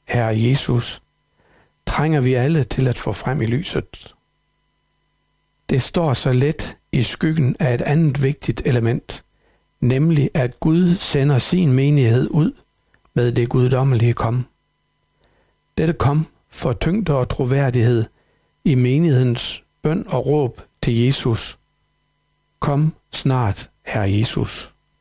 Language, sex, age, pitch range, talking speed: Danish, male, 60-79, 115-145 Hz, 120 wpm